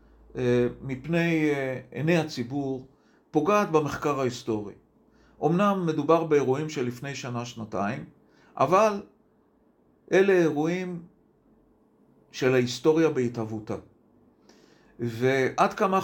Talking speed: 80 wpm